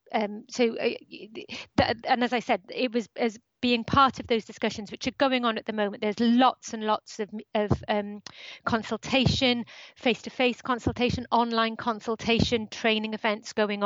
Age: 30-49